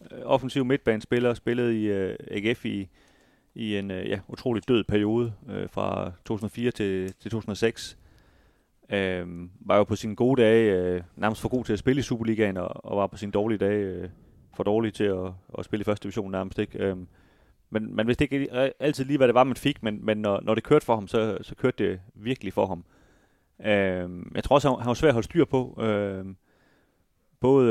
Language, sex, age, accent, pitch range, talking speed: Danish, male, 30-49, native, 95-120 Hz, 205 wpm